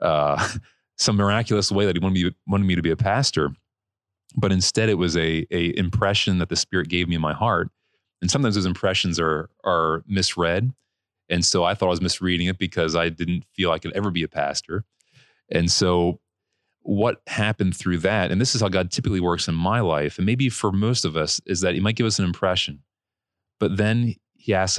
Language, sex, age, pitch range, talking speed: English, male, 30-49, 85-100 Hz, 215 wpm